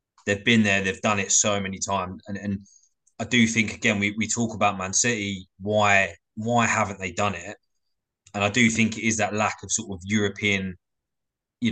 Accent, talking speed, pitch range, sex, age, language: British, 205 wpm, 100-115 Hz, male, 20-39, English